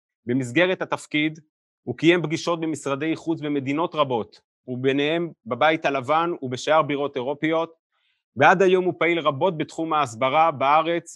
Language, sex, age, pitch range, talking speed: Hebrew, male, 30-49, 135-170 Hz, 125 wpm